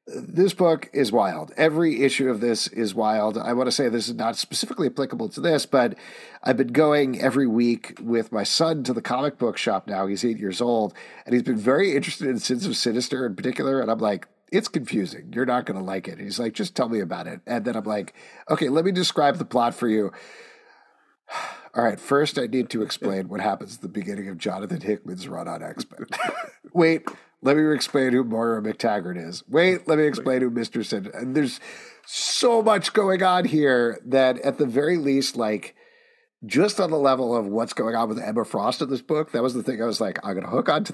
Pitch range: 110-150 Hz